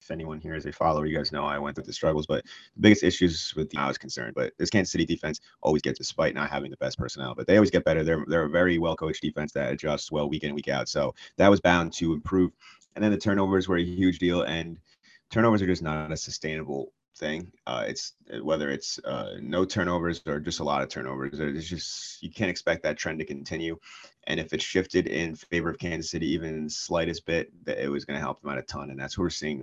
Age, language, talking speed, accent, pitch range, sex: 30-49, English, 255 wpm, American, 75-90 Hz, male